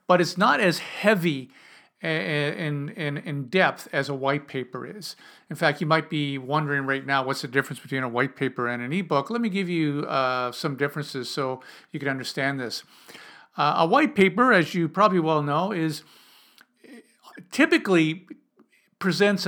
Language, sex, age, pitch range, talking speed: English, male, 50-69, 140-195 Hz, 175 wpm